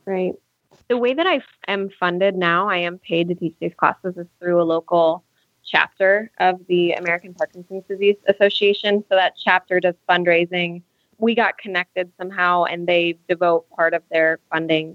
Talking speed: 170 wpm